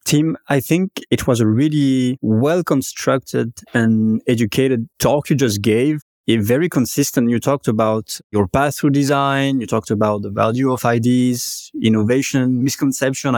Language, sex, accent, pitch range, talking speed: French, male, French, 120-145 Hz, 150 wpm